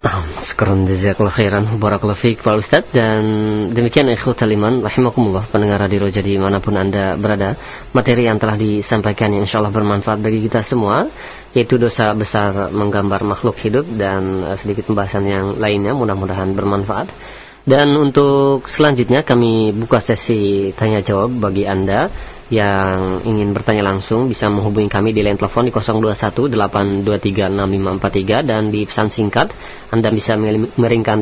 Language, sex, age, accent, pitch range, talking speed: Indonesian, female, 20-39, native, 100-115 Hz, 135 wpm